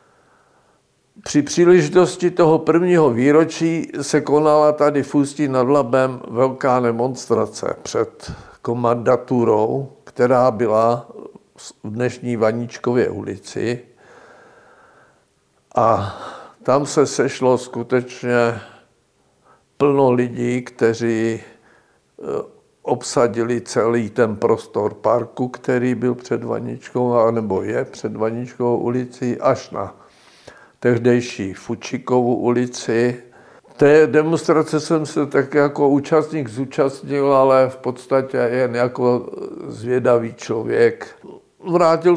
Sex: male